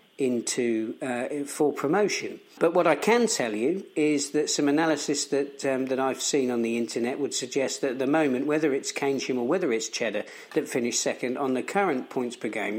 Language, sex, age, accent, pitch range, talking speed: English, male, 50-69, British, 115-150 Hz, 205 wpm